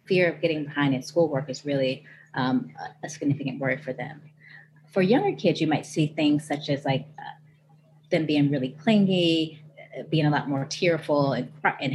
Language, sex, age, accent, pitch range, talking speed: English, female, 30-49, American, 145-175 Hz, 185 wpm